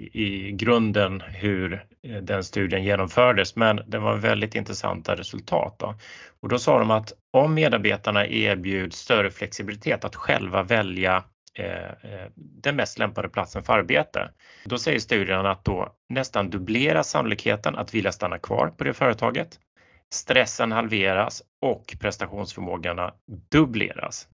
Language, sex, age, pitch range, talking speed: Swedish, male, 30-49, 95-115 Hz, 130 wpm